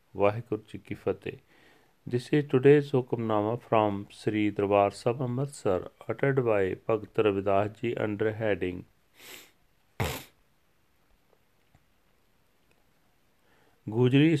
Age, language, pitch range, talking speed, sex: 40-59, Punjabi, 105-125 Hz, 90 wpm, male